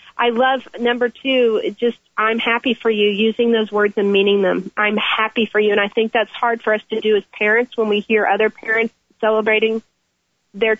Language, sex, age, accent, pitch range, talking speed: English, female, 40-59, American, 220-260 Hz, 205 wpm